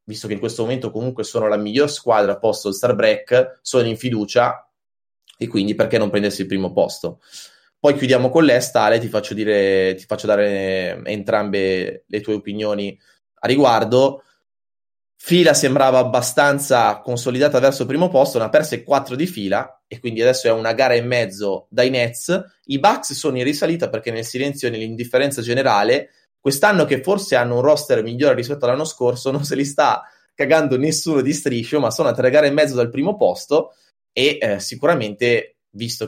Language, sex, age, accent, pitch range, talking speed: Italian, male, 20-39, native, 105-140 Hz, 180 wpm